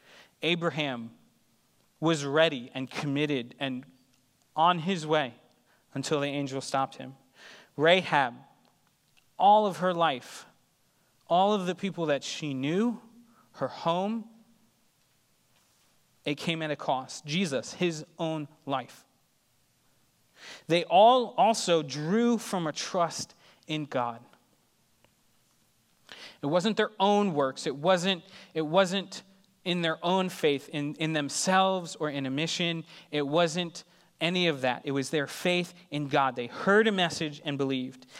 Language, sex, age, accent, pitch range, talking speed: English, male, 30-49, American, 140-185 Hz, 130 wpm